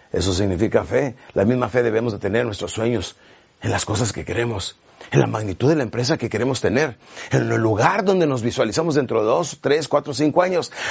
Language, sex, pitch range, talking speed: Spanish, male, 130-195 Hz, 215 wpm